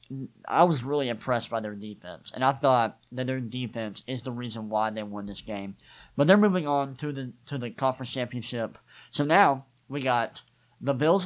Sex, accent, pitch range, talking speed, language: male, American, 120-145 Hz, 195 wpm, English